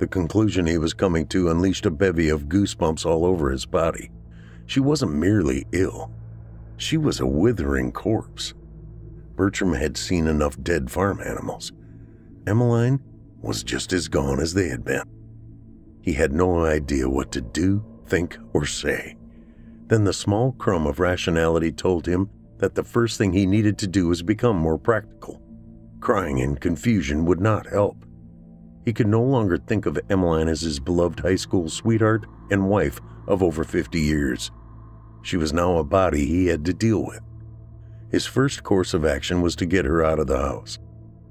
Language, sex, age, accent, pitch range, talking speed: English, male, 50-69, American, 80-110 Hz, 170 wpm